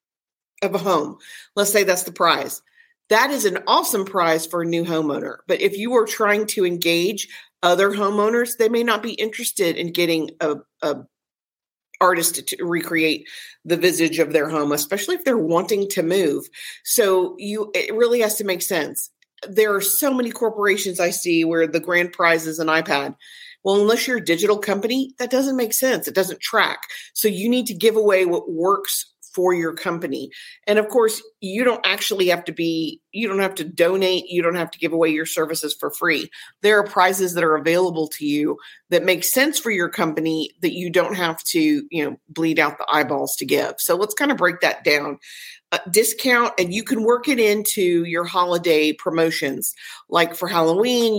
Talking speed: 195 wpm